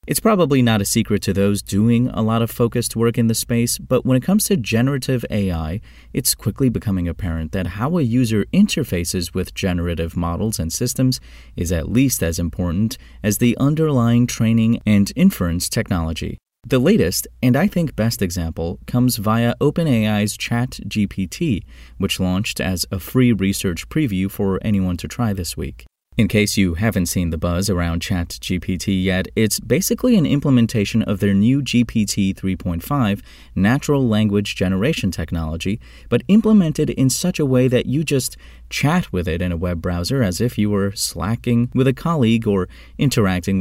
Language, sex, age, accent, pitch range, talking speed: English, male, 30-49, American, 90-125 Hz, 170 wpm